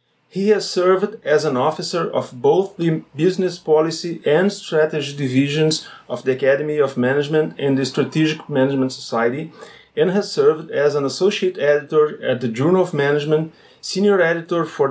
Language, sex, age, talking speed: English, male, 30-49, 155 wpm